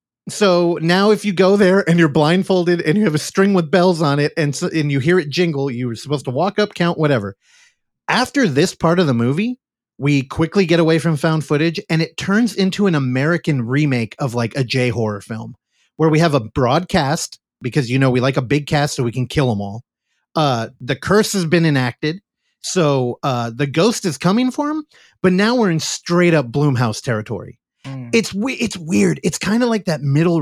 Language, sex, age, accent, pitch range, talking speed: English, male, 30-49, American, 140-195 Hz, 215 wpm